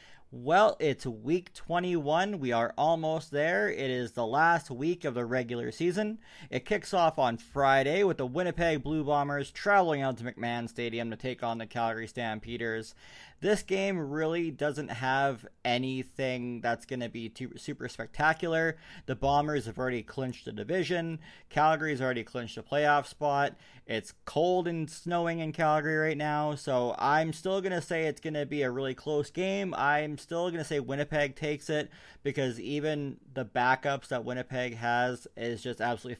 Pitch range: 125-160 Hz